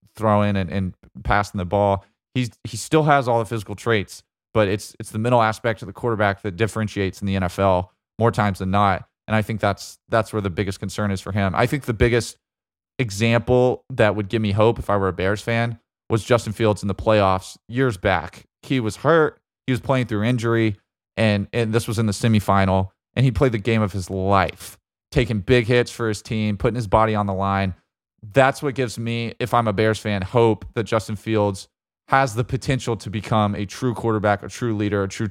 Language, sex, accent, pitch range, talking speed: English, male, American, 100-120 Hz, 220 wpm